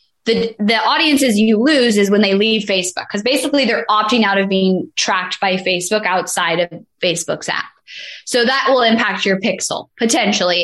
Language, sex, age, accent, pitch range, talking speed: English, female, 10-29, American, 185-235 Hz, 175 wpm